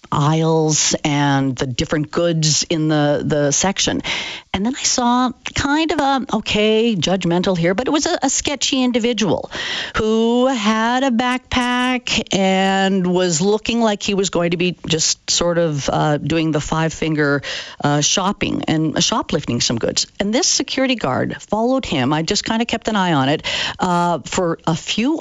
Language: English